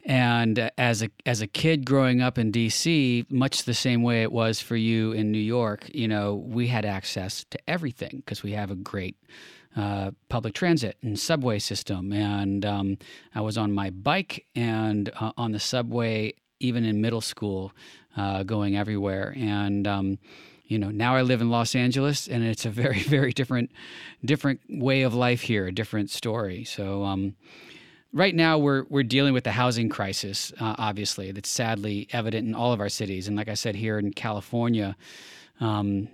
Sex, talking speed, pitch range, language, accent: male, 185 wpm, 105-130 Hz, English, American